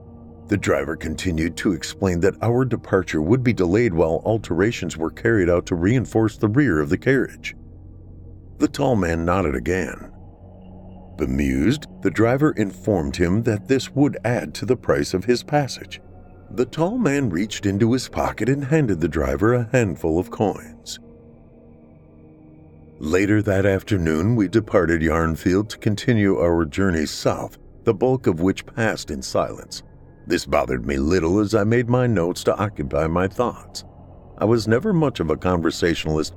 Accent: American